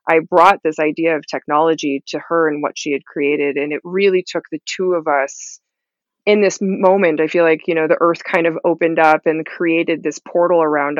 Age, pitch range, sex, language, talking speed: 20-39, 155-175 Hz, female, English, 220 wpm